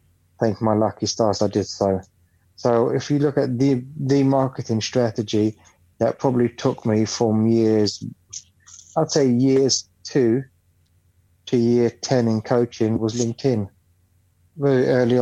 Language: English